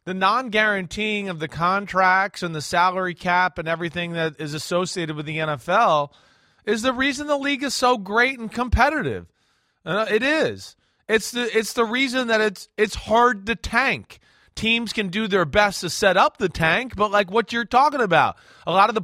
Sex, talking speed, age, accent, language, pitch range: male, 190 wpm, 30-49, American, English, 180-225 Hz